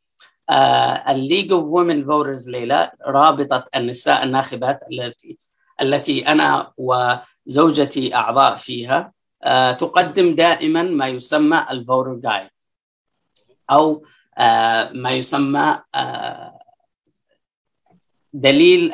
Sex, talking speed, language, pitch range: female, 90 wpm, Arabic, 125-165 Hz